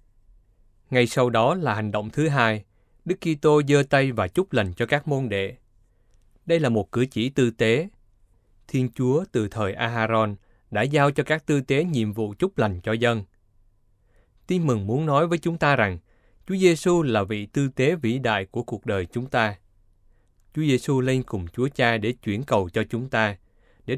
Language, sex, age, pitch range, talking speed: Vietnamese, male, 20-39, 100-135 Hz, 195 wpm